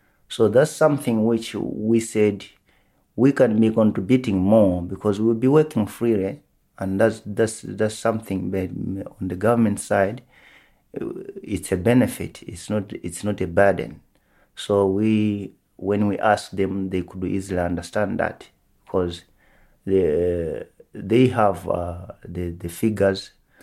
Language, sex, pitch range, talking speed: English, male, 90-110 Hz, 135 wpm